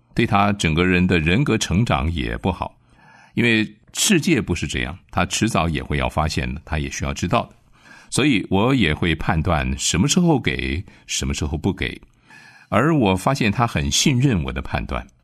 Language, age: Chinese, 50-69